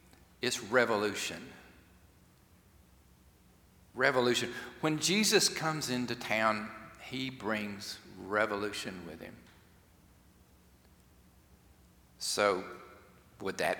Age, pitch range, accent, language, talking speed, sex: 50-69, 95-140 Hz, American, English, 70 wpm, male